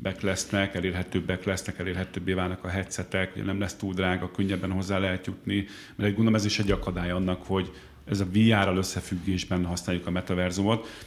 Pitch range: 90-105 Hz